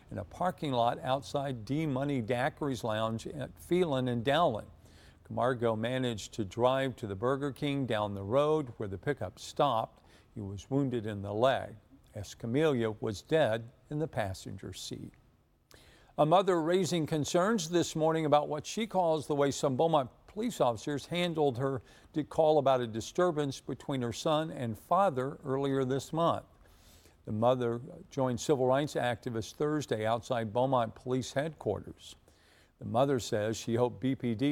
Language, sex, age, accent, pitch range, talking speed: English, male, 50-69, American, 115-150 Hz, 155 wpm